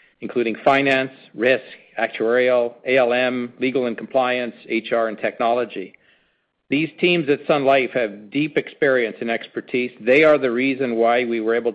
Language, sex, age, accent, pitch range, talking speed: English, male, 50-69, American, 110-130 Hz, 150 wpm